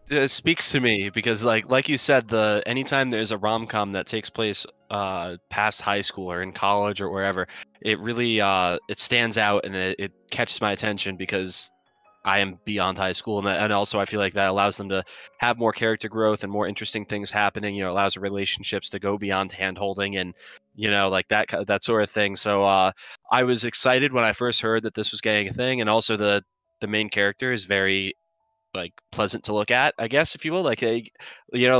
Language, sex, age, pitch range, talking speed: English, male, 20-39, 100-120 Hz, 225 wpm